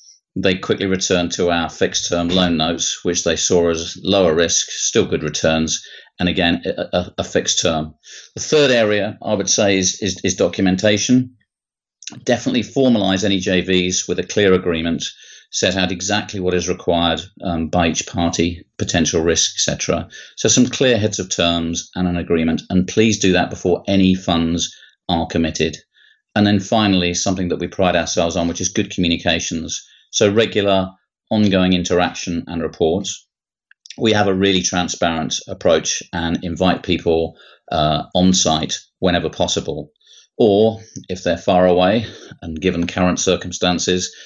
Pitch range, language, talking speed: 85-95 Hz, English, 155 wpm